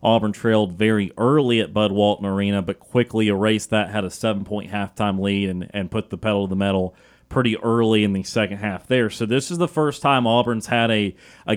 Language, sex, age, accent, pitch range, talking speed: English, male, 30-49, American, 105-125 Hz, 220 wpm